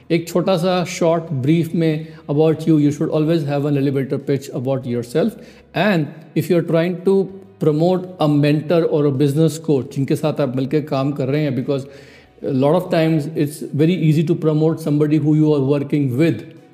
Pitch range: 140-170 Hz